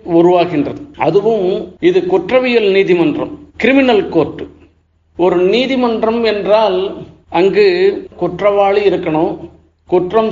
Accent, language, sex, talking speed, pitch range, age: native, Tamil, male, 80 wpm, 170-225 Hz, 50-69